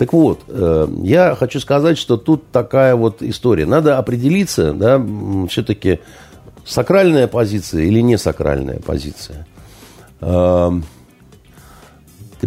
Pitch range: 90-130 Hz